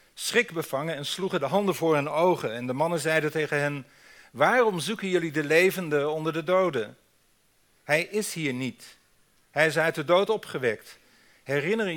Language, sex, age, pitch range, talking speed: Dutch, male, 50-69, 145-180 Hz, 170 wpm